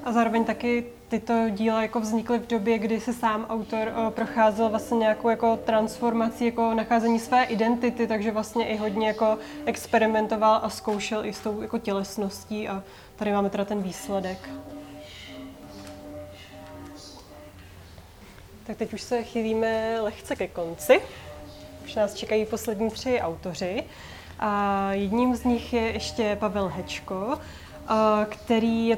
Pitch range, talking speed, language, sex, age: 210-235 Hz, 135 wpm, Czech, female, 20-39